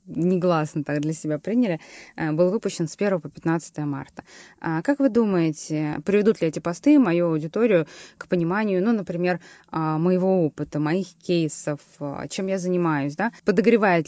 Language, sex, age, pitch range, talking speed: Russian, female, 20-39, 150-180 Hz, 145 wpm